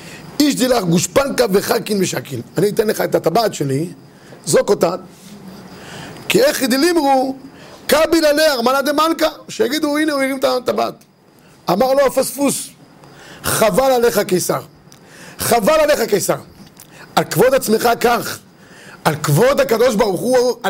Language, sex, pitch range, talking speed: Hebrew, male, 175-260 Hz, 130 wpm